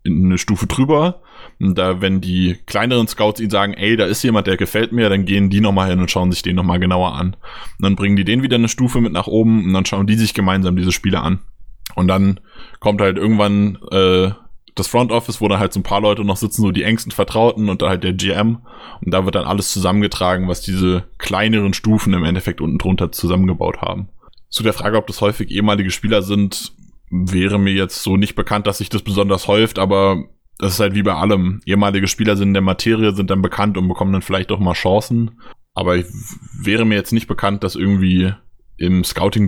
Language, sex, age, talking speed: German, male, 20-39, 225 wpm